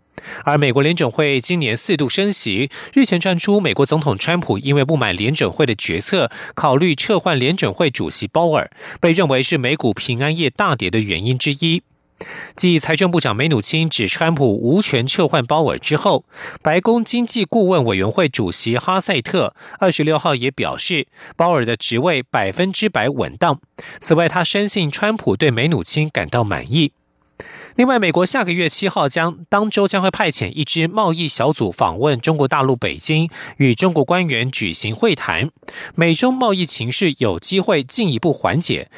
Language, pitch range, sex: German, 130-185 Hz, male